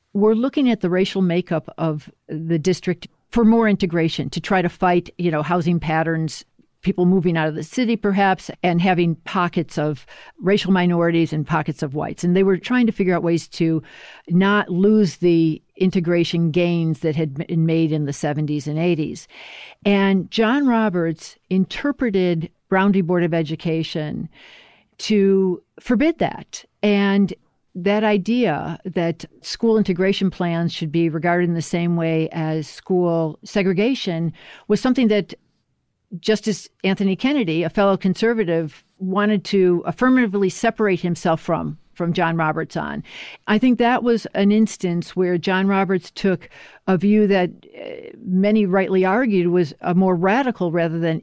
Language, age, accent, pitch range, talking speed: English, 50-69, American, 165-200 Hz, 150 wpm